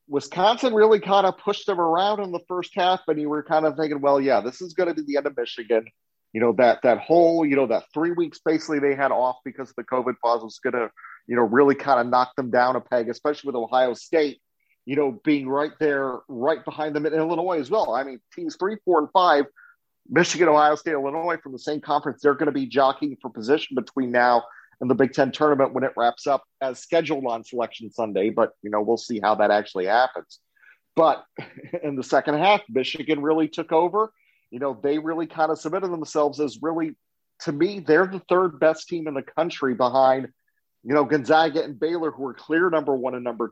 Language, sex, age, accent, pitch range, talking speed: English, male, 40-59, American, 130-160 Hz, 230 wpm